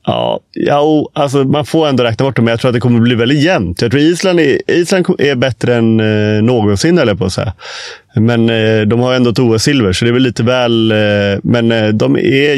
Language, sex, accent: Swedish, male, native